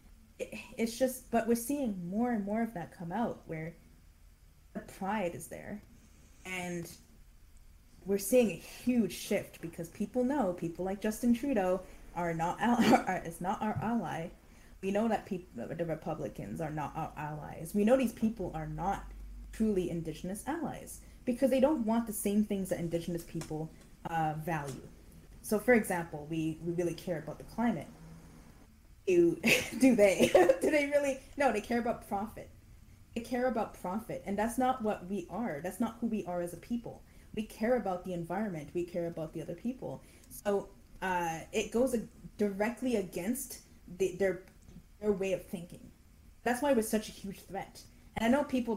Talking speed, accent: 170 wpm, American